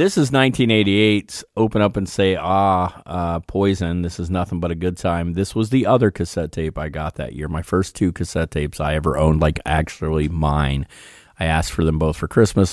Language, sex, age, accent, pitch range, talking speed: English, male, 30-49, American, 85-100 Hz, 210 wpm